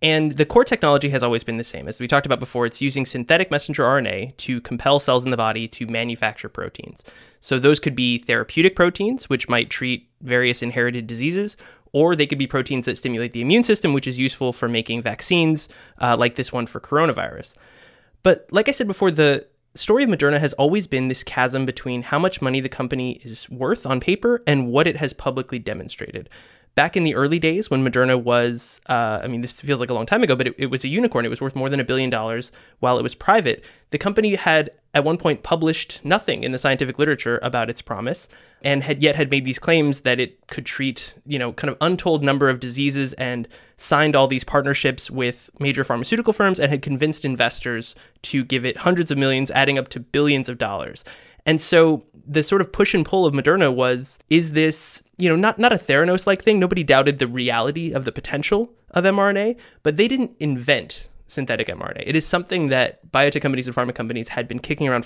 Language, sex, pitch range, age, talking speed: English, male, 125-160 Hz, 20-39, 215 wpm